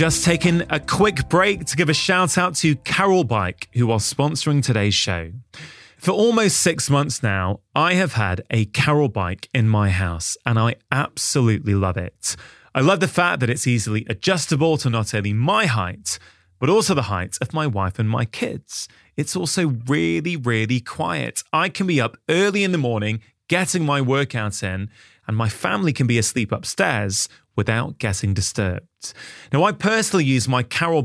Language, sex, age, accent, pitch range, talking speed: English, male, 20-39, British, 110-165 Hz, 180 wpm